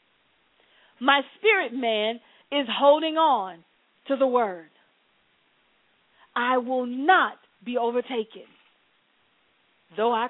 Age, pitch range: 40-59, 240-310 Hz